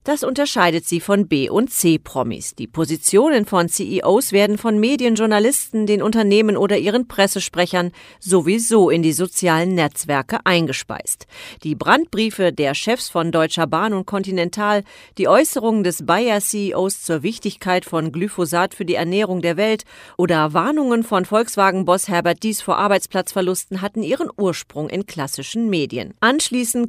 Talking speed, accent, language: 140 wpm, German, German